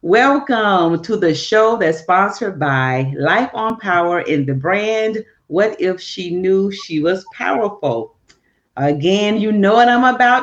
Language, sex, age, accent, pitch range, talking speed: English, female, 40-59, American, 155-220 Hz, 150 wpm